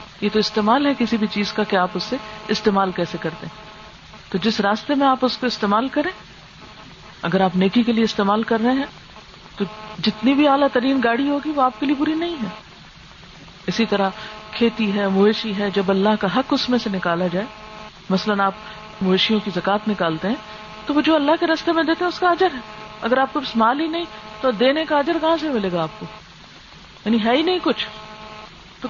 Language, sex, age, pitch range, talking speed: Urdu, female, 50-69, 205-265 Hz, 210 wpm